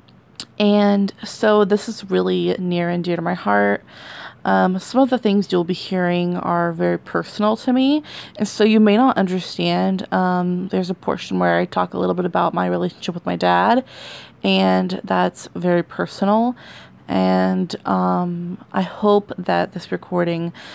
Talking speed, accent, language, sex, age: 165 wpm, American, English, female, 20-39